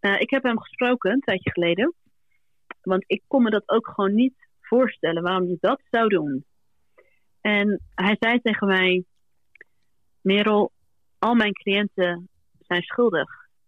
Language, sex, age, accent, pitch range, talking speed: Greek, female, 30-49, Dutch, 180-230 Hz, 145 wpm